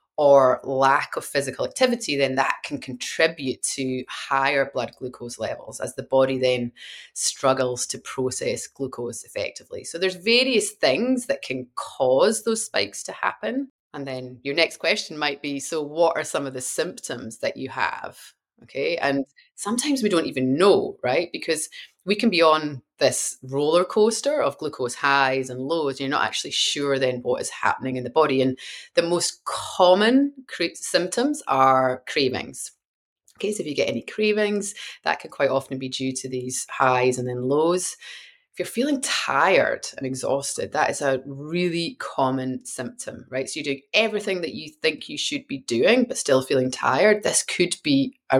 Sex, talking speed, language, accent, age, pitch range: female, 175 wpm, English, British, 30-49, 130-205 Hz